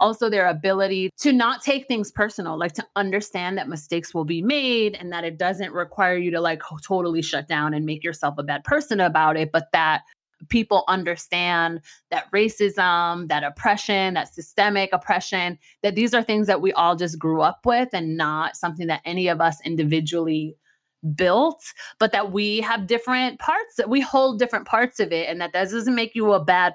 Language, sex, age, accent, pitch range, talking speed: English, female, 30-49, American, 165-215 Hz, 195 wpm